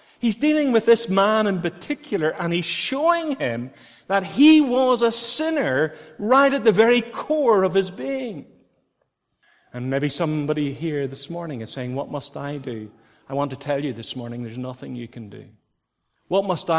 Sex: male